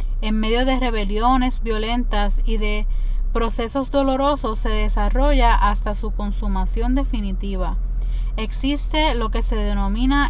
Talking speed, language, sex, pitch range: 115 wpm, Spanish, female, 205-255 Hz